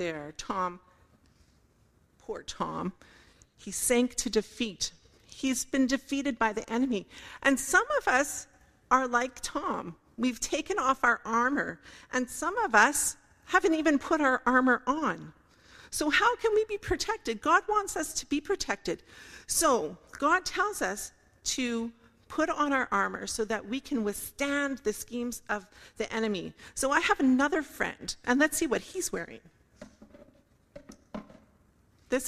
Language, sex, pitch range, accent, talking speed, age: English, female, 225-300 Hz, American, 145 wpm, 40-59